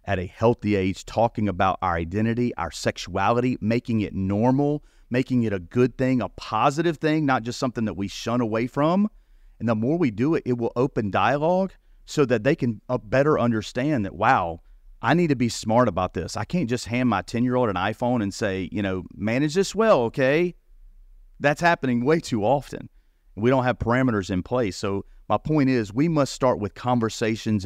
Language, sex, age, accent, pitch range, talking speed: English, male, 40-59, American, 100-130 Hz, 195 wpm